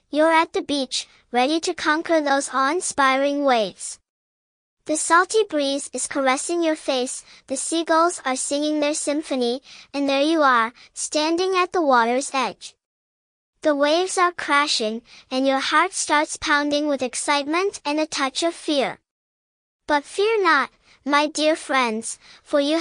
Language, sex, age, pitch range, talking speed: English, male, 10-29, 265-325 Hz, 145 wpm